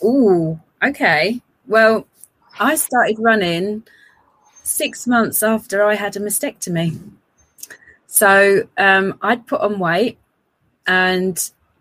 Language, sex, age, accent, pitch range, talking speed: English, female, 30-49, British, 170-205 Hz, 100 wpm